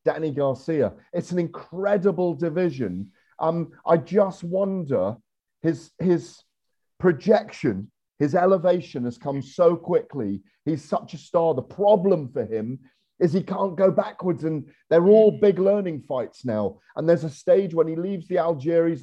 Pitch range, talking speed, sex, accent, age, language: 145-180 Hz, 150 wpm, male, British, 40-59, English